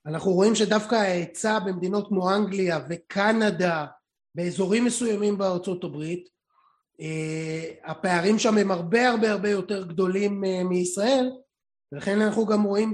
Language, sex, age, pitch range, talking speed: Hebrew, male, 30-49, 180-220 Hz, 115 wpm